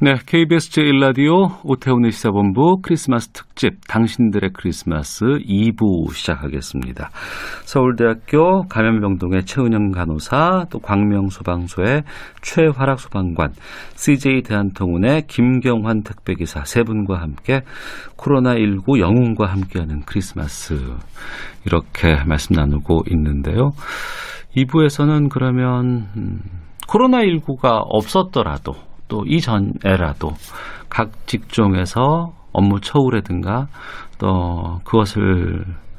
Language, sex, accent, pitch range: Korean, male, native, 85-130 Hz